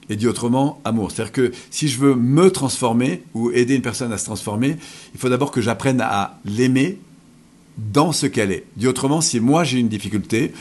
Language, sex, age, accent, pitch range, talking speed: French, male, 50-69, French, 105-140 Hz, 210 wpm